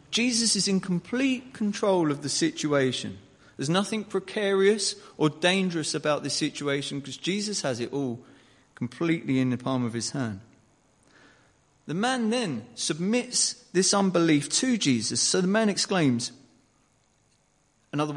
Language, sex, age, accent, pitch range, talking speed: English, male, 30-49, British, 135-195 Hz, 135 wpm